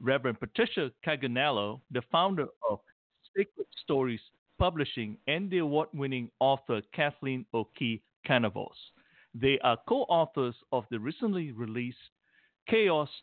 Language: English